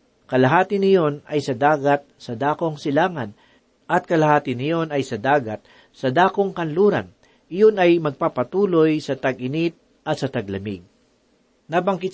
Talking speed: 130 wpm